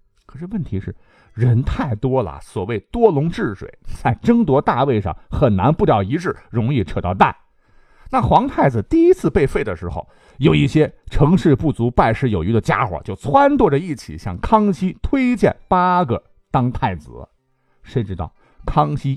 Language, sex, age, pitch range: Chinese, male, 50-69, 115-185 Hz